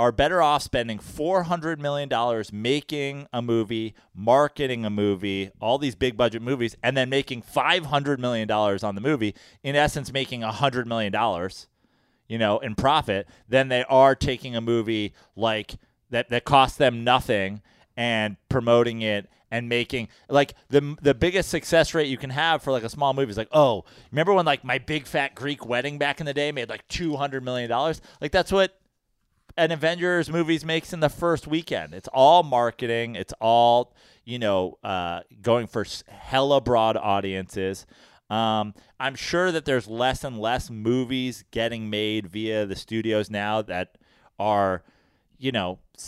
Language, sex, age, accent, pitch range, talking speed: English, male, 30-49, American, 110-140 Hz, 175 wpm